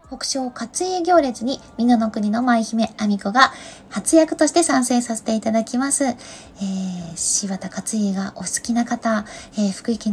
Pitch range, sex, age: 205-270 Hz, female, 20-39